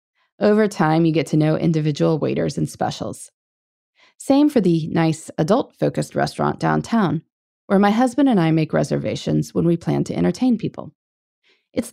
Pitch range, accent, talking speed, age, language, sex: 160-265 Hz, American, 155 wpm, 20-39, English, female